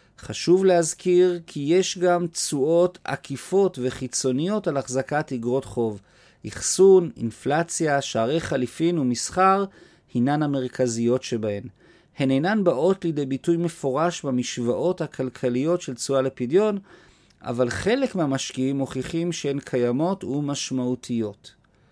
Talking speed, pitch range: 105 wpm, 125-170 Hz